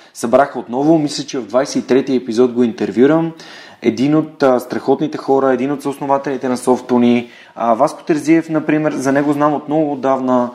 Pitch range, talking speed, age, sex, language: 125-145 Hz, 165 wpm, 20-39, male, Bulgarian